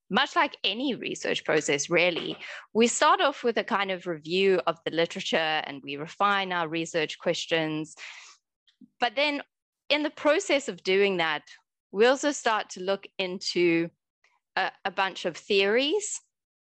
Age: 20-39